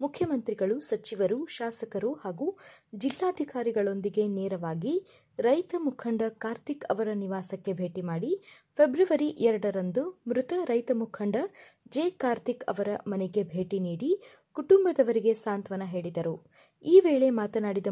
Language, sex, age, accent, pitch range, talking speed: Kannada, female, 20-39, native, 190-270 Hz, 100 wpm